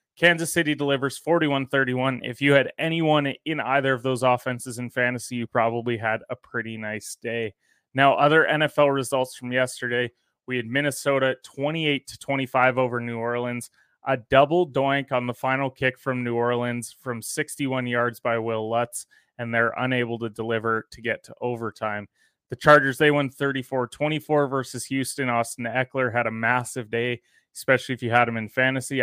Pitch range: 120-140 Hz